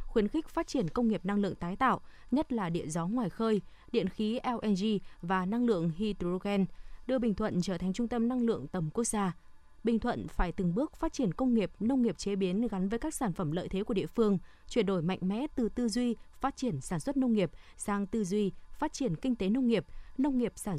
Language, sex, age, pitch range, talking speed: Vietnamese, female, 20-39, 190-245 Hz, 240 wpm